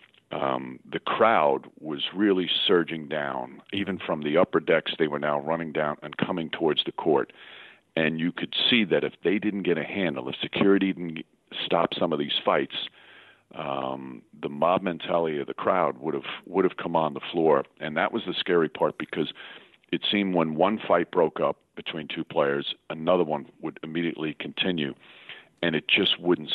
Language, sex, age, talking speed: English, male, 50-69, 180 wpm